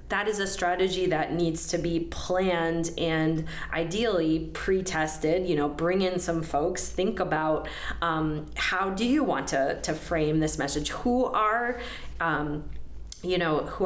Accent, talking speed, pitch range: American, 155 wpm, 160-195 Hz